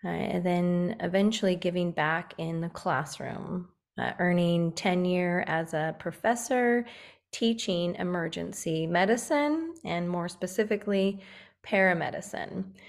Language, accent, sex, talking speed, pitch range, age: English, American, female, 100 wpm, 170-195 Hz, 30-49